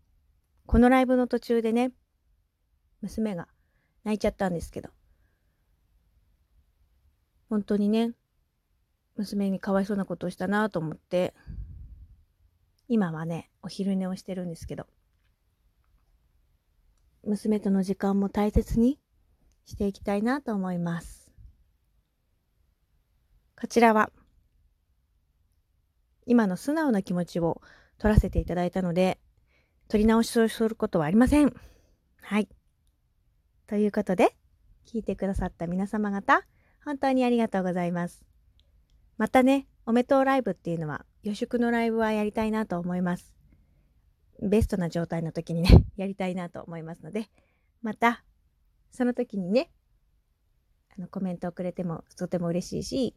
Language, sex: Japanese, female